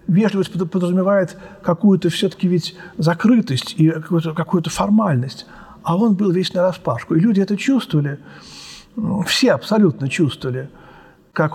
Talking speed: 115 wpm